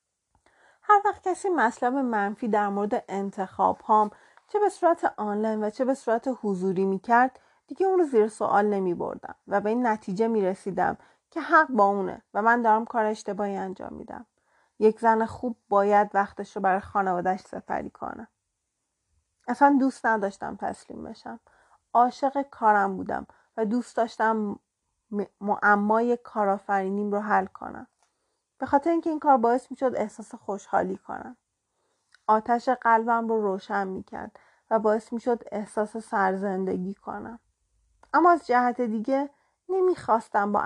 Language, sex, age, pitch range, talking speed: Persian, female, 30-49, 200-245 Hz, 145 wpm